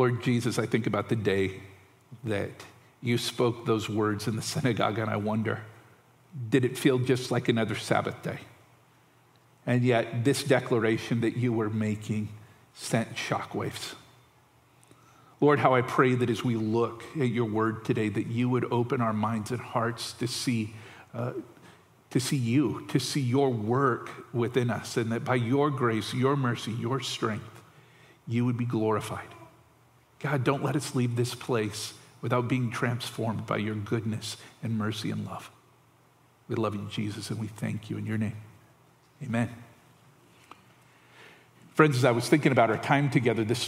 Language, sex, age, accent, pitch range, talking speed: English, male, 50-69, American, 110-135 Hz, 165 wpm